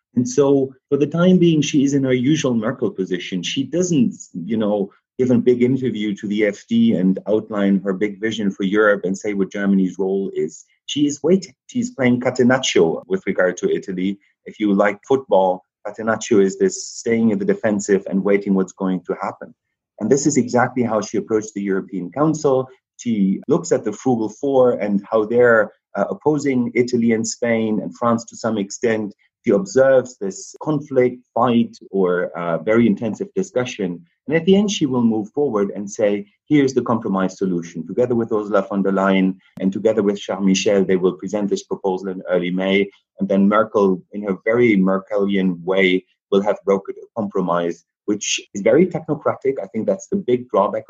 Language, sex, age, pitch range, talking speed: English, male, 30-49, 95-130 Hz, 185 wpm